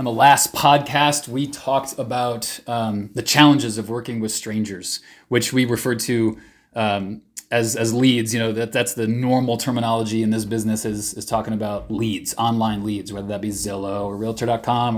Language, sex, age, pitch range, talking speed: English, male, 20-39, 110-125 Hz, 180 wpm